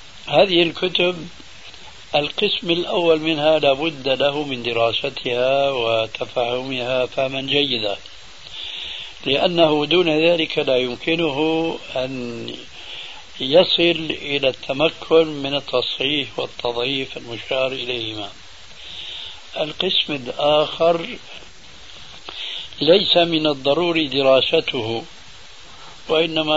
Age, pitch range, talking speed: 60-79, 125-160 Hz, 75 wpm